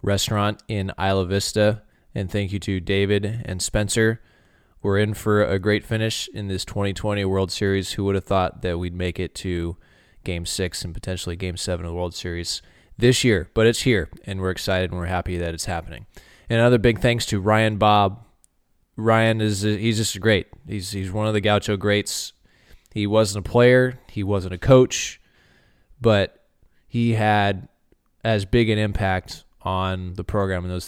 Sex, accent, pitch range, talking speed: male, American, 90-110 Hz, 185 wpm